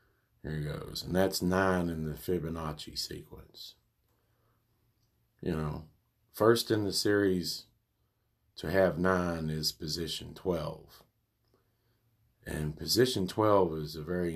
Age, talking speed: 40-59, 115 wpm